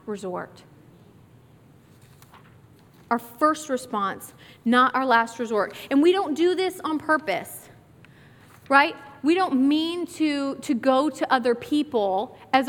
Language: English